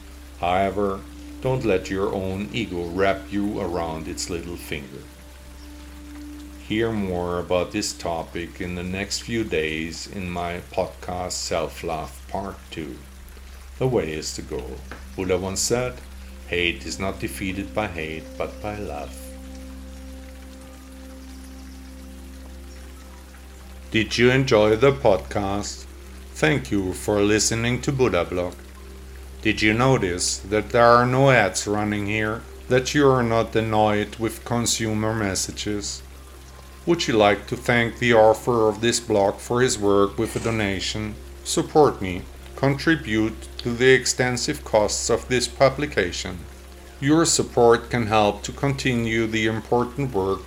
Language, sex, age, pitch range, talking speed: English, male, 50-69, 70-110 Hz, 130 wpm